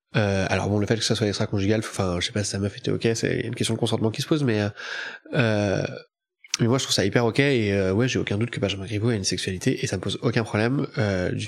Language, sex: French, male